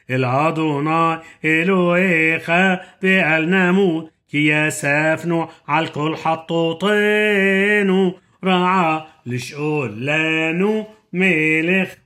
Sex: male